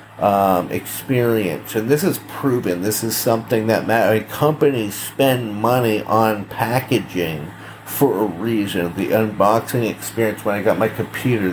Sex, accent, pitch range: male, American, 100-130 Hz